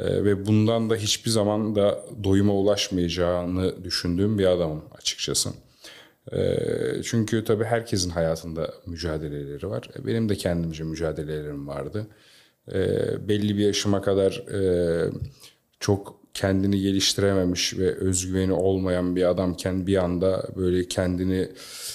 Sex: male